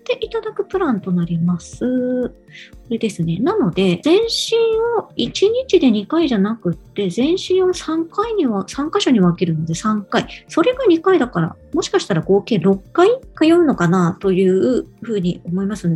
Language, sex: Japanese, male